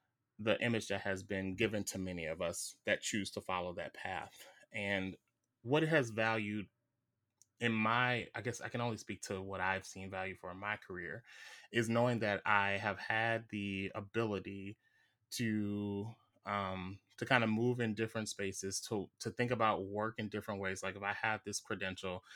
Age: 20-39